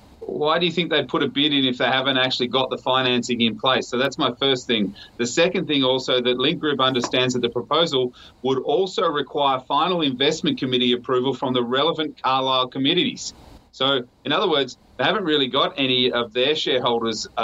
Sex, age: male, 30-49